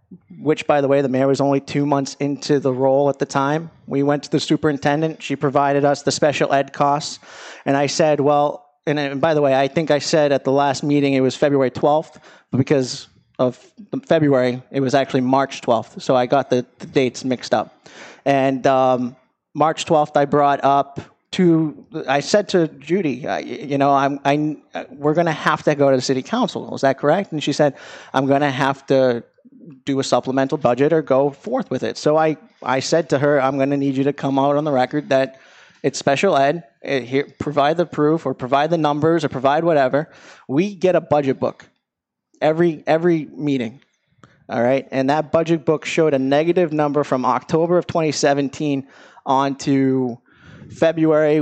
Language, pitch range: English, 135-155 Hz